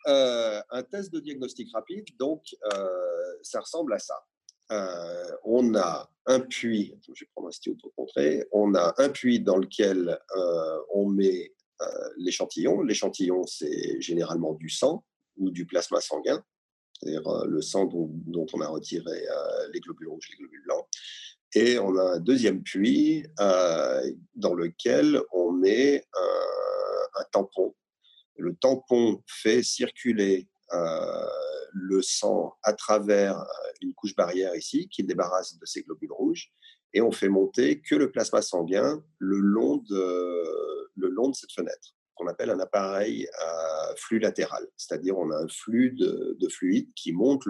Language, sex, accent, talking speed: French, male, French, 160 wpm